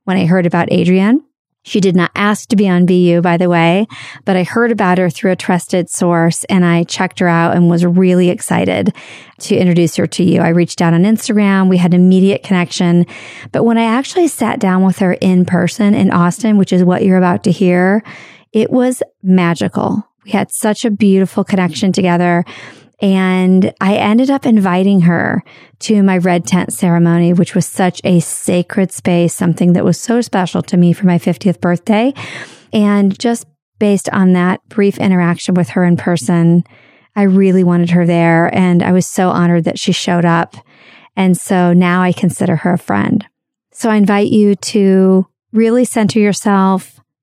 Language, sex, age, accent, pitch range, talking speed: English, female, 40-59, American, 175-205 Hz, 185 wpm